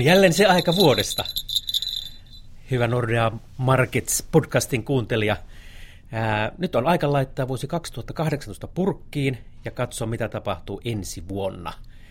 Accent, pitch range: native, 105-130 Hz